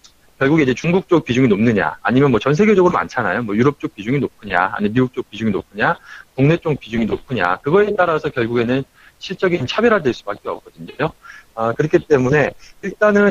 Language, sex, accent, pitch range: Korean, male, native, 115-170 Hz